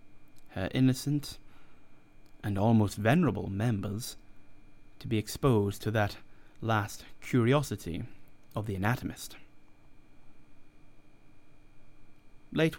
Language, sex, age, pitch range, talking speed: English, male, 30-49, 105-130 Hz, 80 wpm